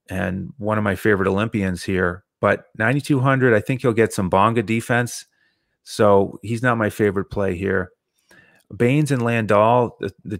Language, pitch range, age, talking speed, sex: English, 100-120 Hz, 30-49, 160 wpm, male